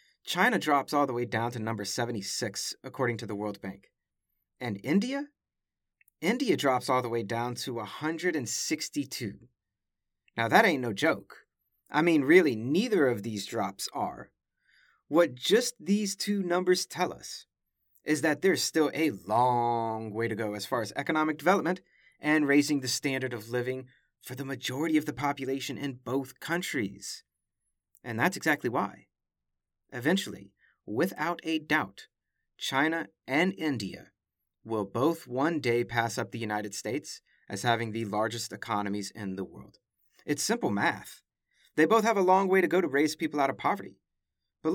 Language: English